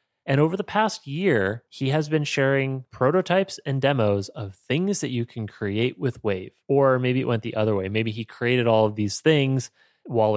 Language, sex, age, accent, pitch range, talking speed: English, male, 30-49, American, 105-135 Hz, 205 wpm